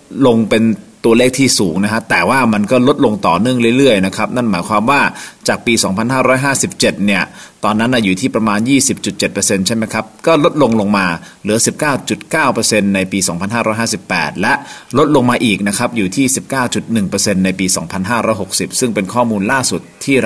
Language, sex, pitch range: Thai, male, 95-120 Hz